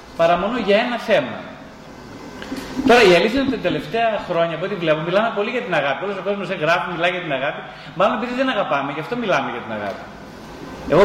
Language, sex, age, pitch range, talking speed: Greek, male, 30-49, 165-225 Hz, 225 wpm